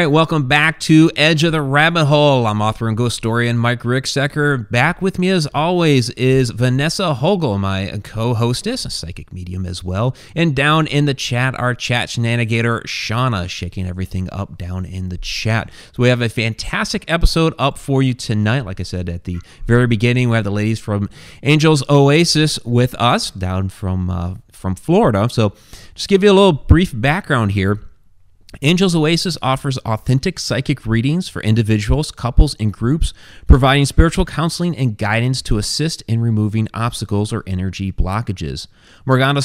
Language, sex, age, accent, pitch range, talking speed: English, male, 30-49, American, 105-145 Hz, 170 wpm